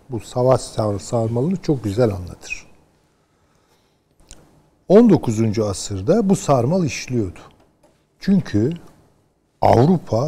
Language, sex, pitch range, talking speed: Turkish, male, 105-145 Hz, 75 wpm